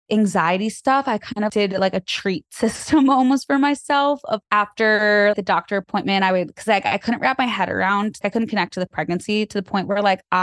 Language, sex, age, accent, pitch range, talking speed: English, female, 20-39, American, 175-205 Hz, 225 wpm